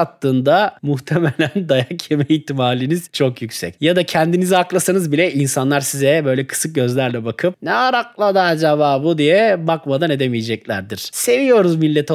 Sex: male